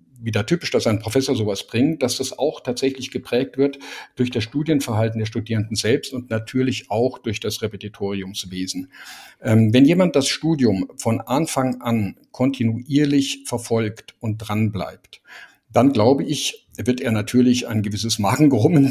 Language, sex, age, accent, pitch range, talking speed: German, male, 50-69, German, 115-145 Hz, 145 wpm